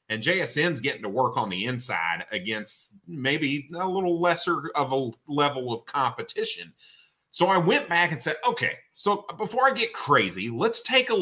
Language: English